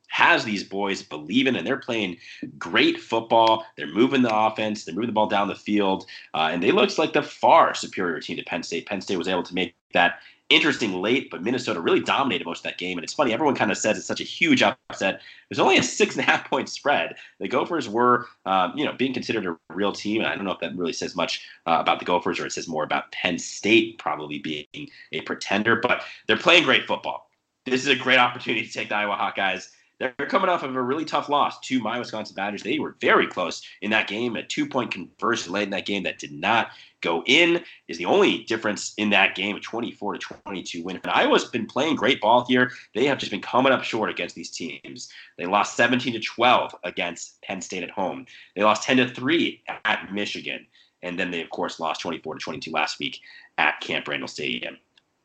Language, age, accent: English, 30-49, American